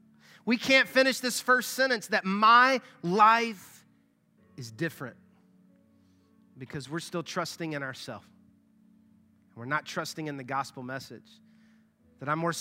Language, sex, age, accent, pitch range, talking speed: English, male, 30-49, American, 145-220 Hz, 130 wpm